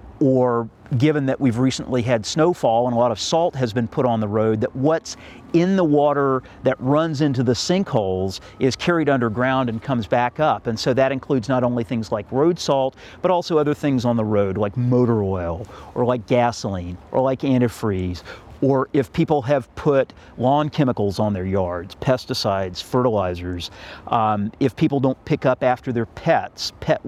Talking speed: 185 wpm